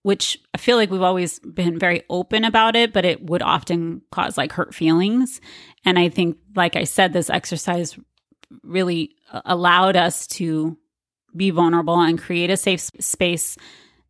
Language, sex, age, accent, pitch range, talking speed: English, female, 30-49, American, 165-190 Hz, 160 wpm